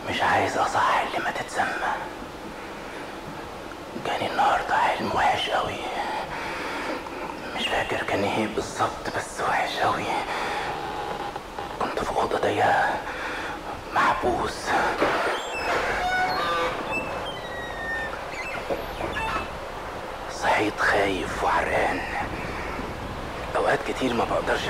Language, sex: Arabic, male